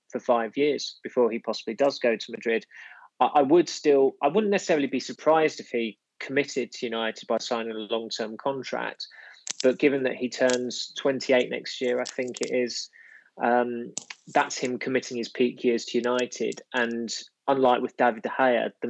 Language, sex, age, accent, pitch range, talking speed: English, male, 20-39, British, 115-130 Hz, 180 wpm